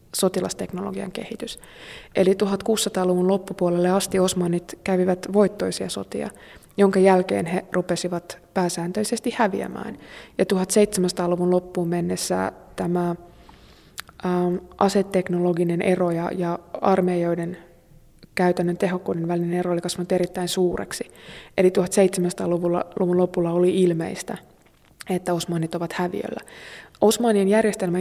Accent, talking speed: native, 95 wpm